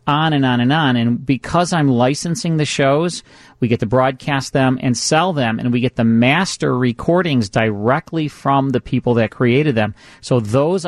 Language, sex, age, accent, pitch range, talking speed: English, male, 40-59, American, 120-145 Hz, 190 wpm